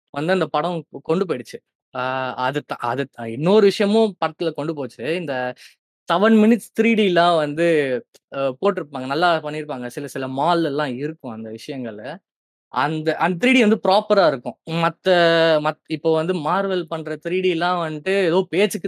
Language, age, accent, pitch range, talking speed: Tamil, 20-39, native, 145-185 Hz, 145 wpm